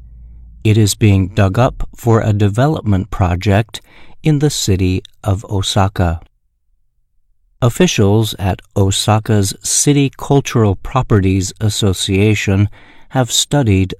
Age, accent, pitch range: 50-69, American, 95-115 Hz